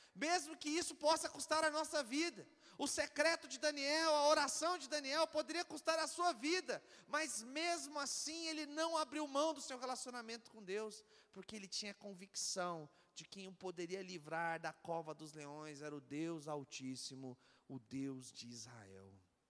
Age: 40-59